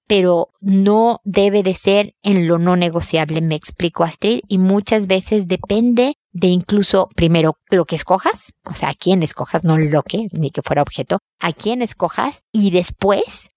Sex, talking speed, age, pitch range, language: female, 170 wpm, 50-69, 170-215 Hz, Spanish